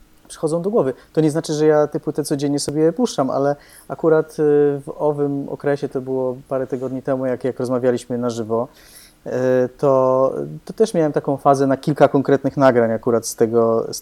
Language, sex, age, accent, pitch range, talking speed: Polish, male, 20-39, native, 120-145 Hz, 180 wpm